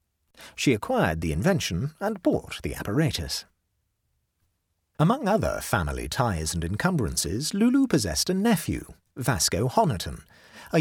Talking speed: 115 wpm